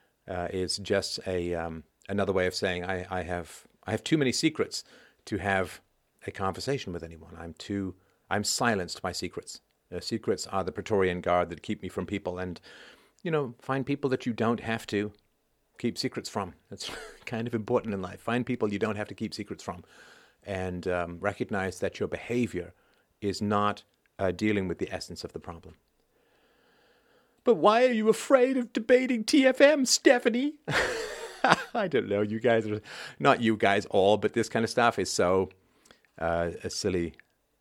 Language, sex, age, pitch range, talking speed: English, male, 40-59, 95-140 Hz, 180 wpm